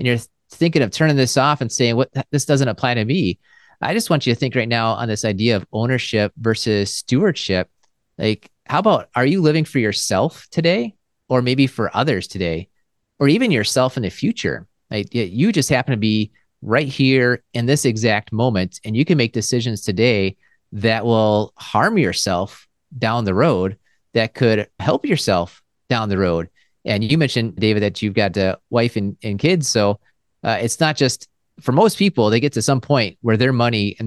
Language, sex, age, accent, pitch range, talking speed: English, male, 30-49, American, 105-135 Hz, 195 wpm